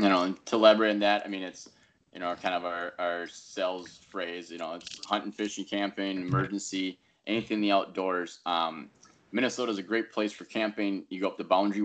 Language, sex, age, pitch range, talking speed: English, male, 20-39, 85-100 Hz, 210 wpm